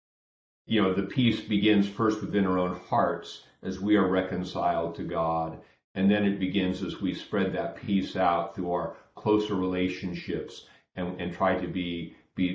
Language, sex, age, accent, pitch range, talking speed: English, male, 50-69, American, 90-105 Hz, 170 wpm